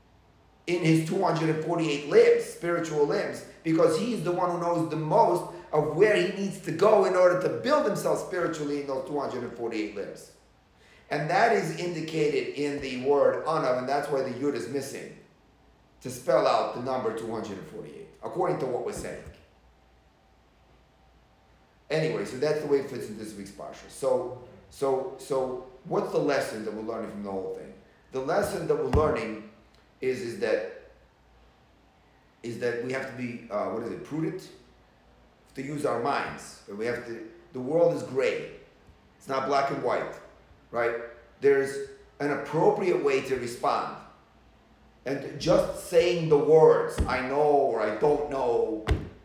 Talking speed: 160 wpm